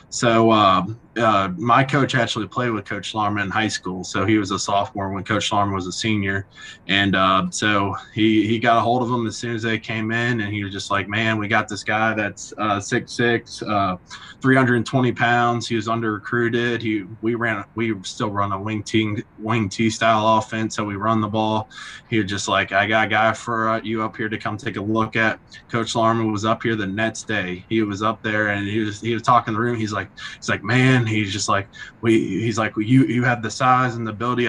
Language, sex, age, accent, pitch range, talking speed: English, male, 20-39, American, 100-115 Hz, 240 wpm